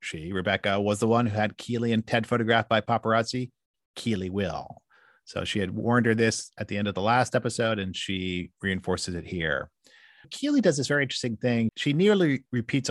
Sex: male